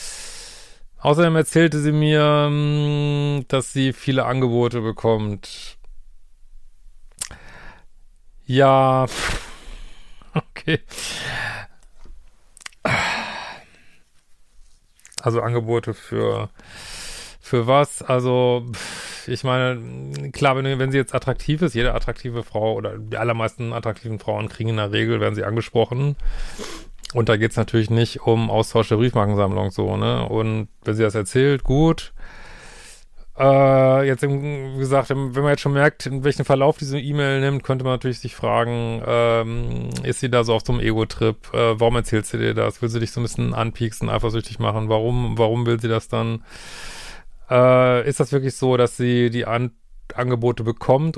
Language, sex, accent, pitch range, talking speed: German, male, German, 110-130 Hz, 140 wpm